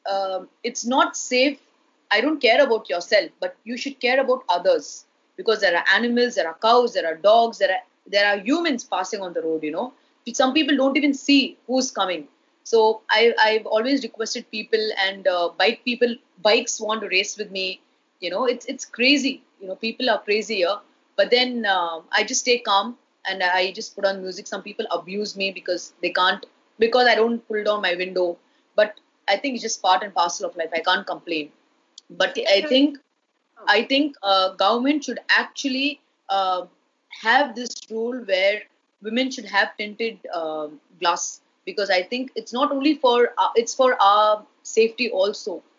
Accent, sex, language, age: native, female, Hindi, 30-49